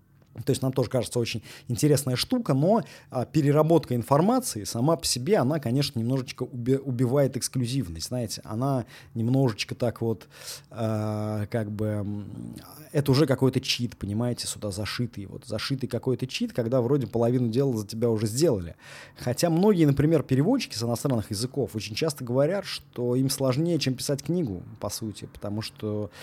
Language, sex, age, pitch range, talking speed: Russian, male, 20-39, 115-140 Hz, 155 wpm